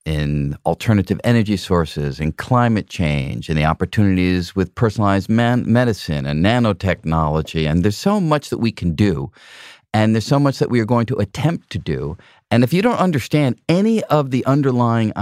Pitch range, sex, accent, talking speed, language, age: 95-130 Hz, male, American, 180 wpm, English, 40-59